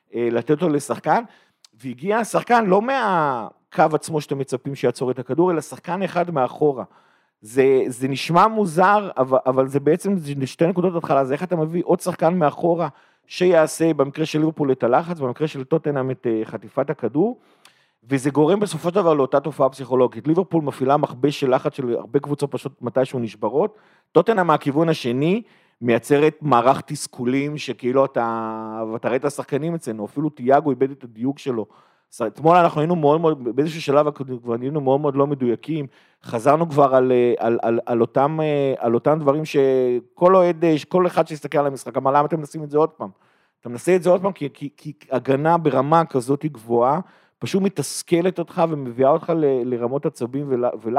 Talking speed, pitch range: 170 wpm, 130-160 Hz